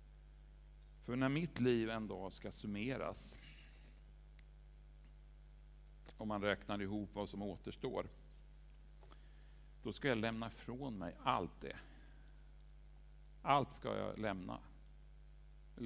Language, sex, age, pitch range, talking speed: Swedish, male, 50-69, 100-135 Hz, 105 wpm